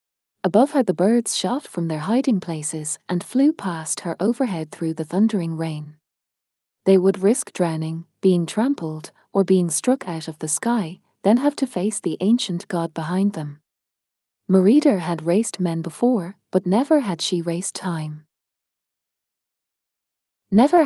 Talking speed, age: 150 wpm, 30-49